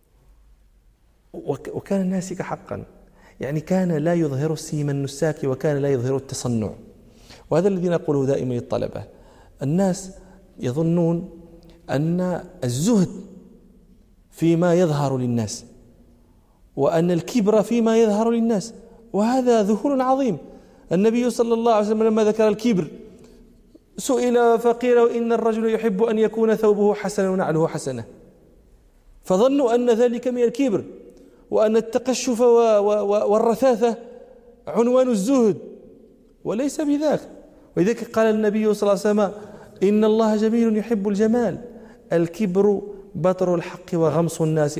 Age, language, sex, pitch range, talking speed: 40-59, Arabic, male, 175-235 Hz, 110 wpm